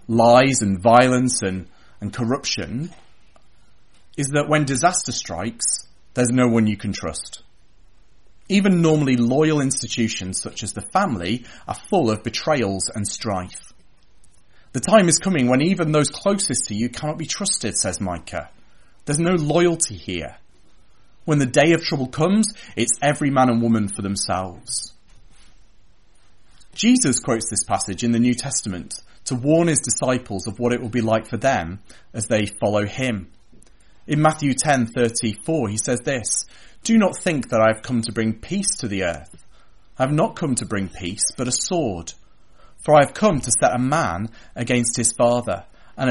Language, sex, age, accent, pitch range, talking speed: English, male, 30-49, British, 105-140 Hz, 165 wpm